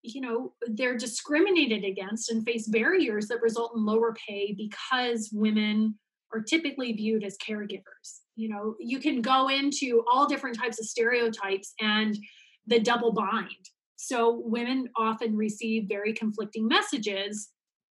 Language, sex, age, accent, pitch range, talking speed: English, female, 30-49, American, 215-255 Hz, 140 wpm